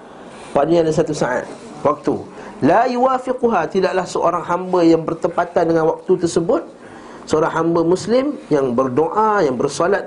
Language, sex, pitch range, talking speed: Malay, male, 140-195 Hz, 125 wpm